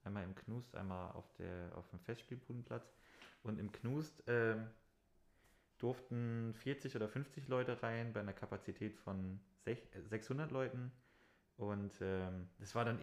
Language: German